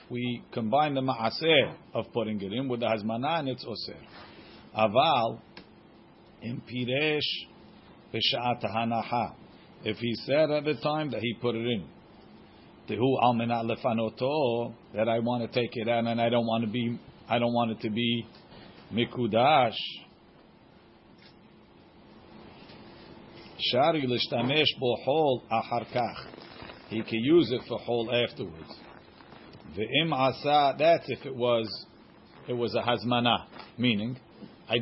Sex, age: male, 50-69